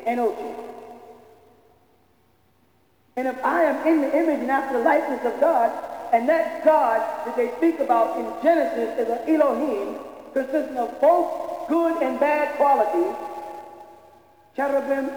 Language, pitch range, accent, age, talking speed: English, 230-320 Hz, American, 40-59, 130 wpm